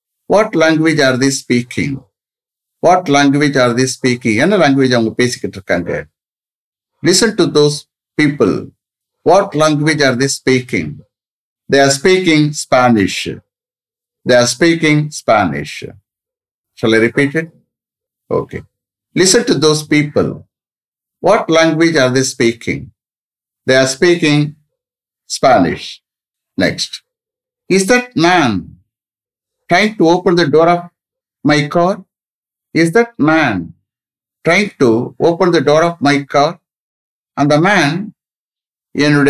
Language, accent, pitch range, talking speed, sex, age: English, Indian, 135-180 Hz, 110 wpm, male, 50-69